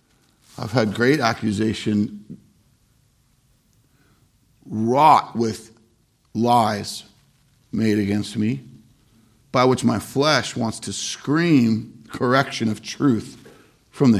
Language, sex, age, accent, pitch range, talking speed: English, male, 50-69, American, 110-130 Hz, 95 wpm